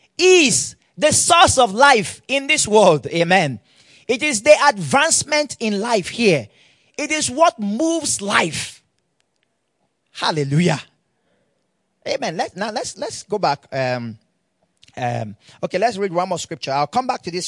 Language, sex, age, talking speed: English, male, 30-49, 145 wpm